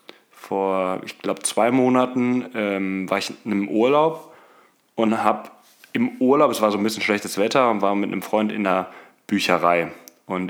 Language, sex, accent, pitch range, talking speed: German, male, German, 100-115 Hz, 170 wpm